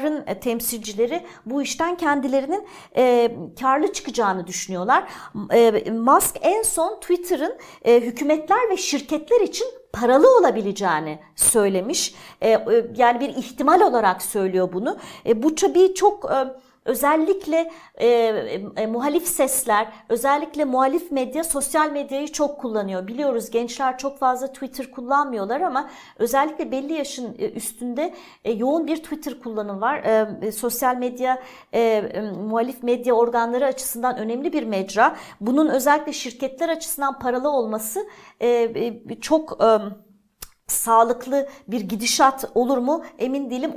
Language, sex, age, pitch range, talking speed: Turkish, female, 50-69, 235-300 Hz, 125 wpm